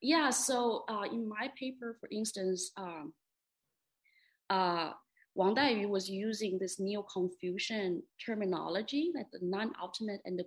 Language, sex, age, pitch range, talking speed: English, female, 20-39, 180-225 Hz, 125 wpm